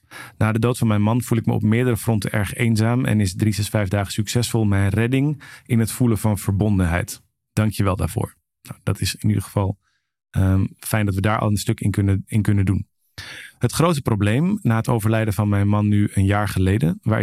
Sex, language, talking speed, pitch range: male, Dutch, 215 wpm, 105-120 Hz